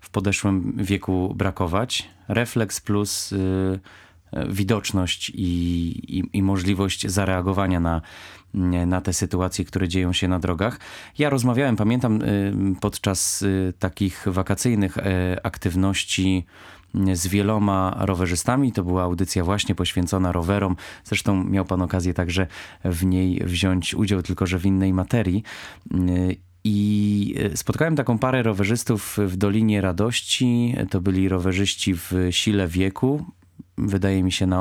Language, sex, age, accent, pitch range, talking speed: Polish, male, 20-39, native, 90-105 Hz, 115 wpm